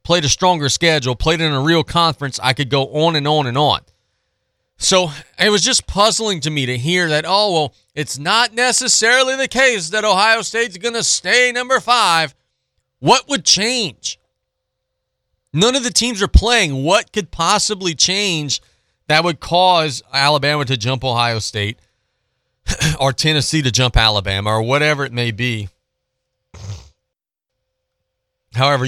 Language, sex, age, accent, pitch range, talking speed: English, male, 40-59, American, 105-155 Hz, 155 wpm